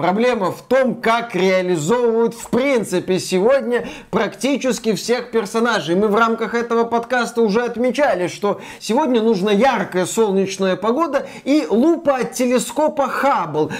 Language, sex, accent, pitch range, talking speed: Russian, male, native, 200-280 Hz, 125 wpm